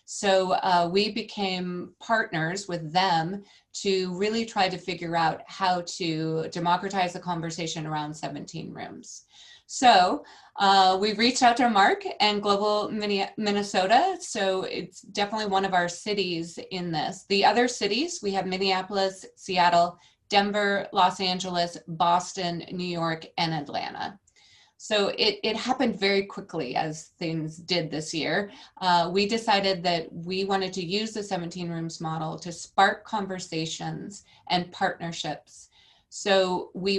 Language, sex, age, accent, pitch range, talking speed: English, female, 30-49, American, 170-200 Hz, 140 wpm